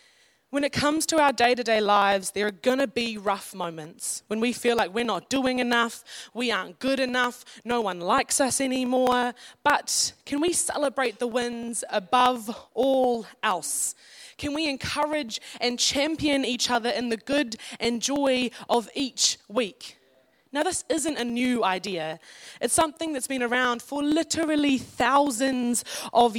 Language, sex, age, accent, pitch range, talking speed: English, female, 20-39, Australian, 205-265 Hz, 160 wpm